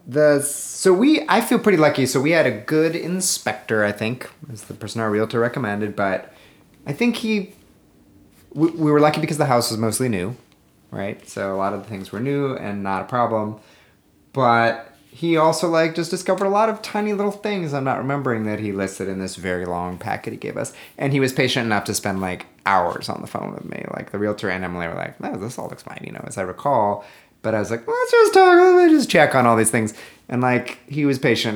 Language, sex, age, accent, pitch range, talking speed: English, male, 30-49, American, 100-150 Hz, 235 wpm